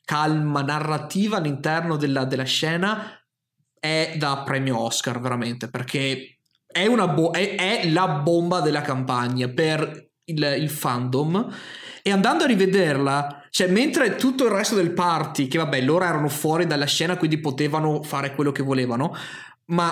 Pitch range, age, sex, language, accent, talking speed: 140-180 Hz, 20-39, male, Italian, native, 150 wpm